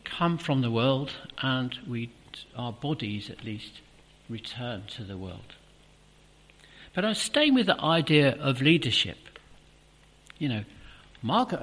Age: 60-79